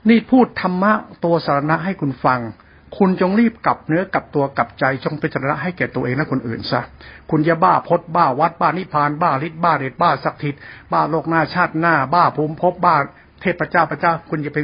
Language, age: Thai, 60-79